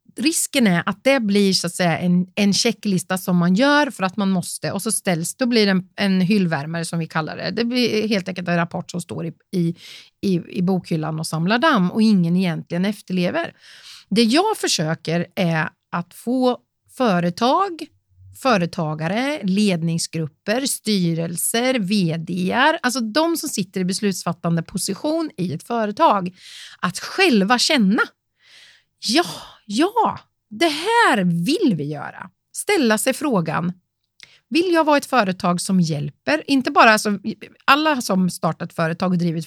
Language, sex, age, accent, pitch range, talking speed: Swedish, female, 40-59, native, 175-250 Hz, 150 wpm